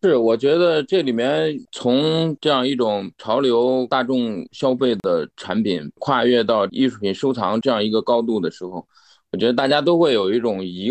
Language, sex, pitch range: Chinese, male, 110-140 Hz